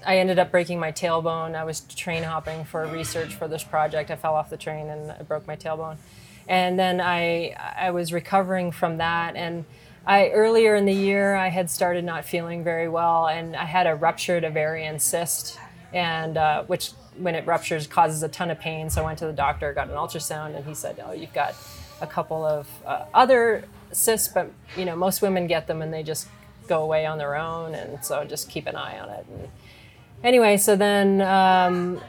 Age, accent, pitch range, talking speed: 30-49, American, 160-185 Hz, 210 wpm